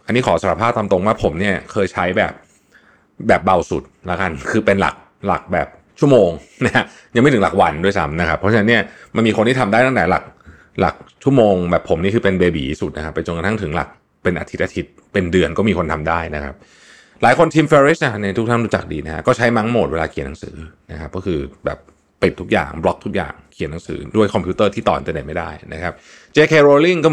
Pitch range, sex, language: 85-120 Hz, male, Thai